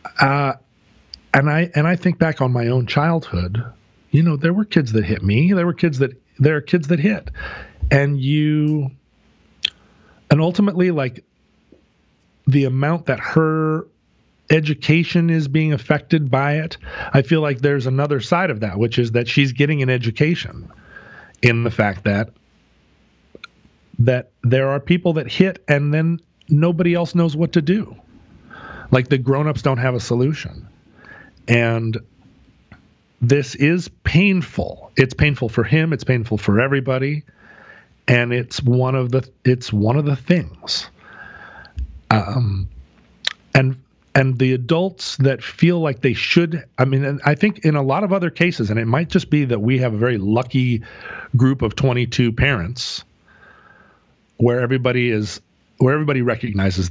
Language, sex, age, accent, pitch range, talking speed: English, male, 40-59, American, 120-155 Hz, 155 wpm